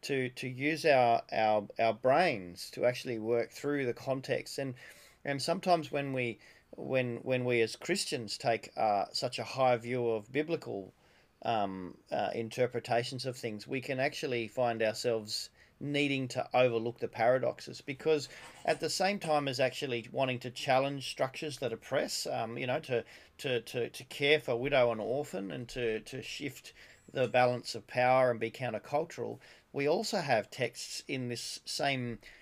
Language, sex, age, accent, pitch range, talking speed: English, male, 30-49, Australian, 120-140 Hz, 165 wpm